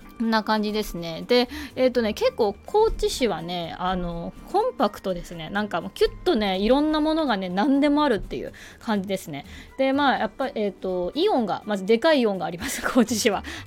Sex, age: female, 20-39